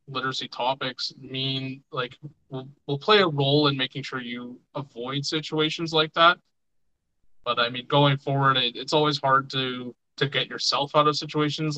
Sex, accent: male, American